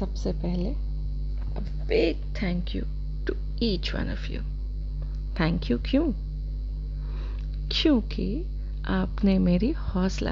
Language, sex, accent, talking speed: Hindi, female, native, 70 wpm